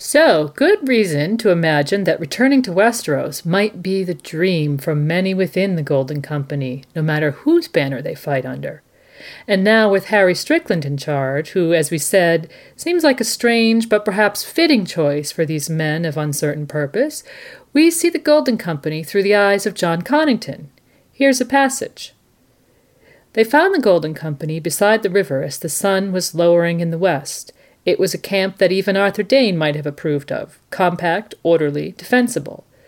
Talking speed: 175 wpm